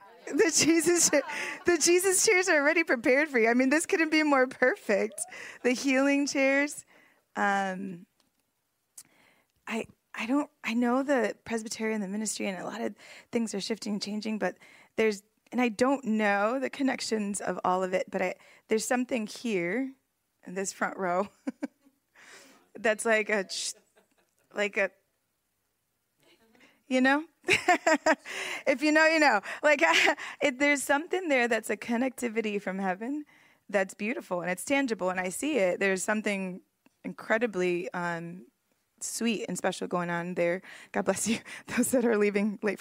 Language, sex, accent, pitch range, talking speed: English, female, American, 200-270 Hz, 150 wpm